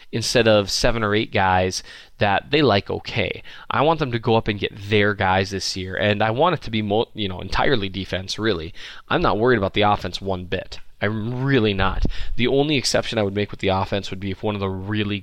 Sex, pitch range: male, 95-125 Hz